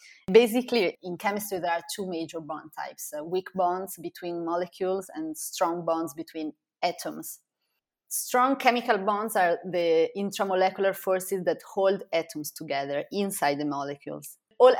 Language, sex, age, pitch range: Chinese, female, 20-39, 165-205 Hz